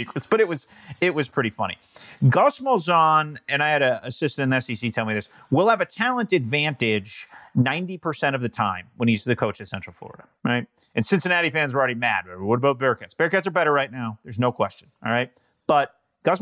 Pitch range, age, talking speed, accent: 130-180 Hz, 30-49, 220 wpm, American